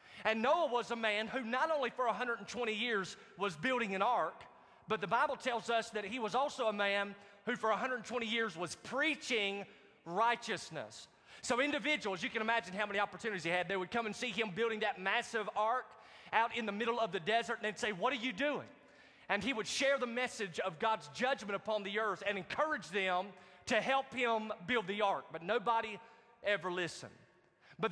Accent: American